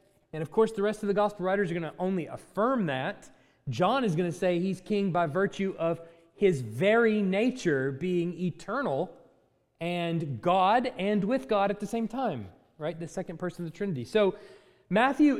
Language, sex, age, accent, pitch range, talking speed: English, male, 30-49, American, 145-210 Hz, 185 wpm